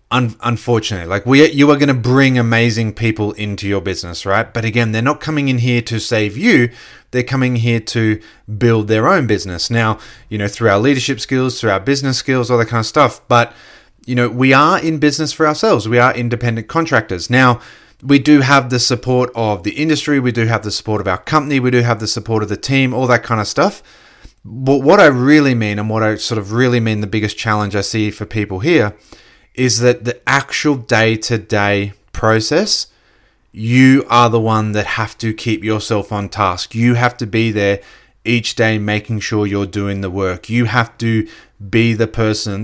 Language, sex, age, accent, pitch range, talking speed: English, male, 30-49, Australian, 105-125 Hz, 210 wpm